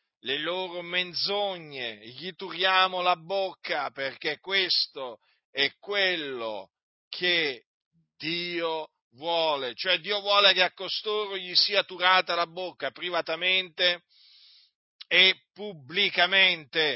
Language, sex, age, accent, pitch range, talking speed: Italian, male, 50-69, native, 180-210 Hz, 100 wpm